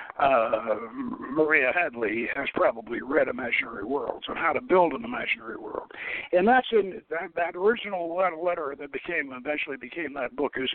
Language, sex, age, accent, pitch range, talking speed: English, male, 60-79, American, 165-245 Hz, 155 wpm